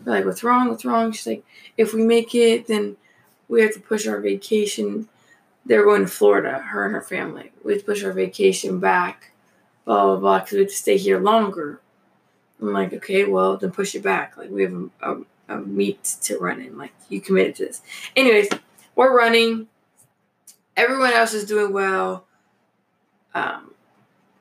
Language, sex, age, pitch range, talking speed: English, female, 20-39, 185-230 Hz, 185 wpm